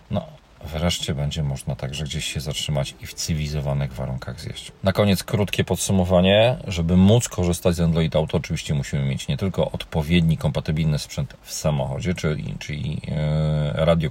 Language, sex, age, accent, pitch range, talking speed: Polish, male, 40-59, native, 80-100 Hz, 150 wpm